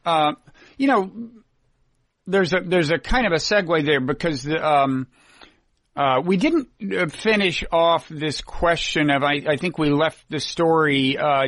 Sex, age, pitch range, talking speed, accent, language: male, 50-69, 140-185 Hz, 160 wpm, American, English